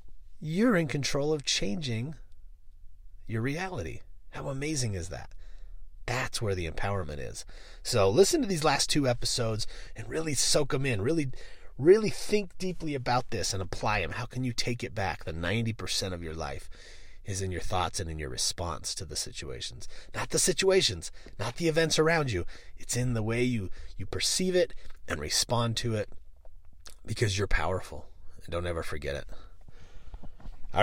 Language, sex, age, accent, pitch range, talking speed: English, male, 30-49, American, 90-130 Hz, 170 wpm